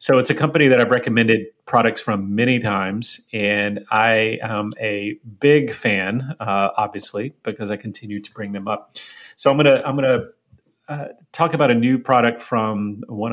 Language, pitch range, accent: English, 105-130 Hz, American